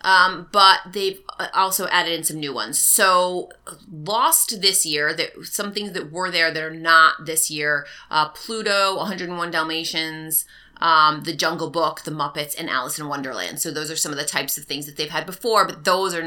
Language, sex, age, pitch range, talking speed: English, female, 30-49, 165-220 Hz, 195 wpm